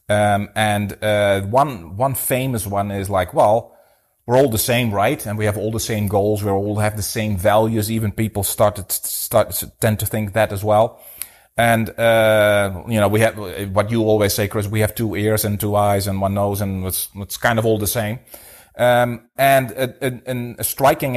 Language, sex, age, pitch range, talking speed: English, male, 30-49, 100-120 Hz, 215 wpm